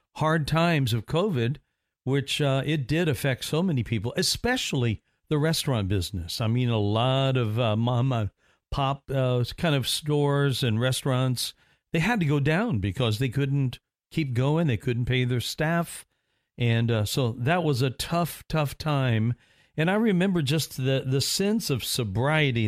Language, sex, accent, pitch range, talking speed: English, male, American, 120-150 Hz, 165 wpm